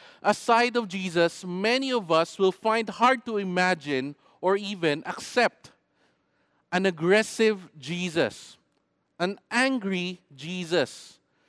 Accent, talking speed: Filipino, 110 wpm